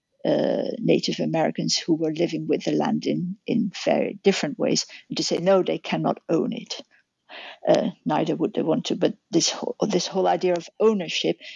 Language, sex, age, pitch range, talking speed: English, female, 50-69, 170-225 Hz, 180 wpm